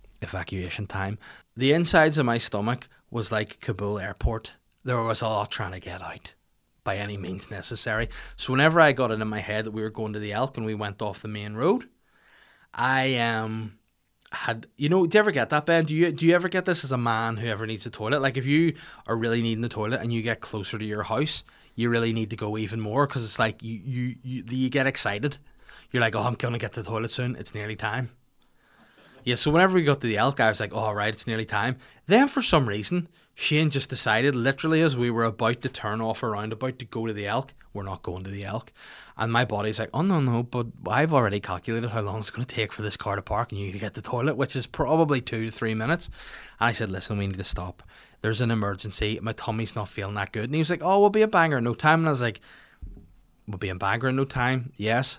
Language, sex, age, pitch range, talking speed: English, male, 20-39, 105-130 Hz, 255 wpm